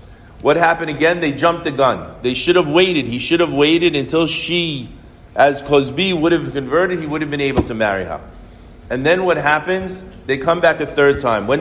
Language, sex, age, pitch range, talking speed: English, male, 40-59, 130-170 Hz, 210 wpm